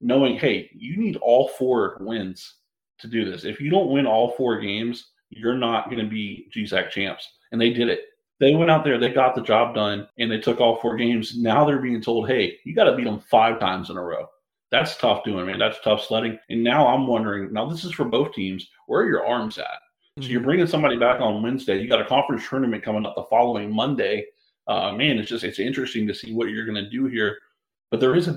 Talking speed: 245 wpm